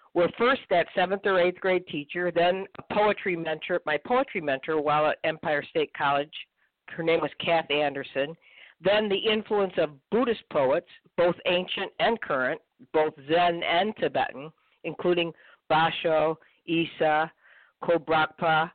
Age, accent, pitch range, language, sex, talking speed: 50-69, American, 155-185 Hz, English, female, 140 wpm